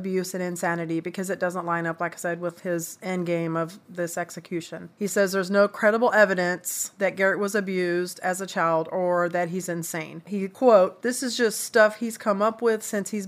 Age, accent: 40-59, American